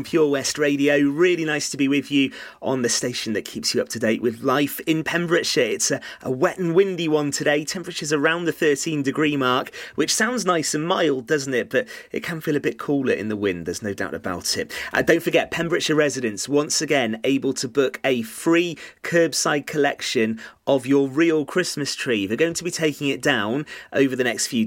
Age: 30-49